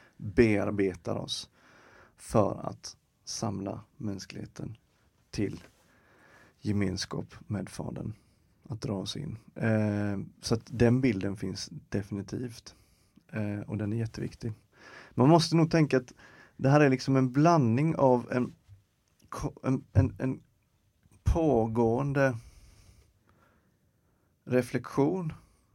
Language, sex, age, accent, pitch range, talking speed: Swedish, male, 30-49, native, 105-125 Hz, 100 wpm